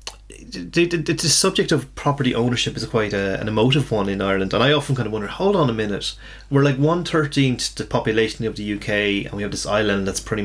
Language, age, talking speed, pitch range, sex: English, 30-49, 230 wpm, 105-130 Hz, male